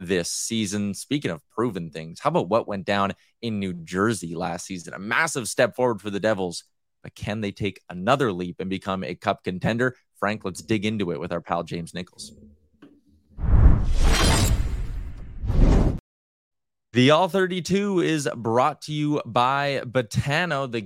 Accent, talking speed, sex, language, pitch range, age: American, 155 wpm, male, English, 100-145 Hz, 20-39